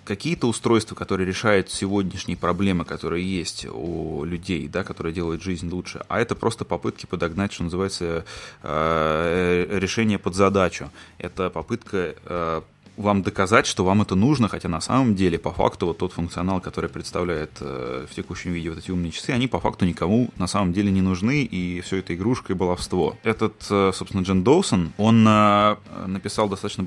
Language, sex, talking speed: Russian, male, 160 wpm